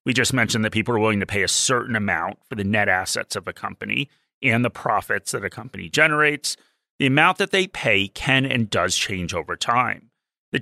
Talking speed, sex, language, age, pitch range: 215 wpm, male, English, 30-49, 105-145 Hz